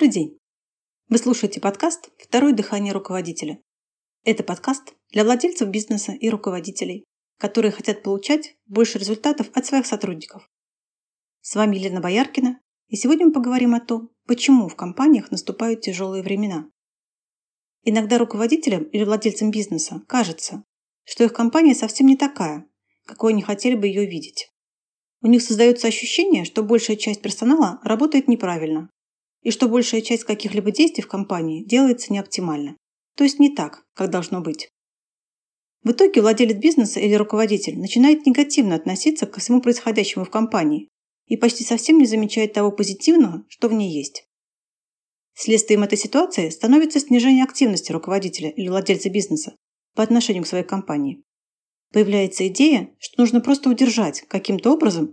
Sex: female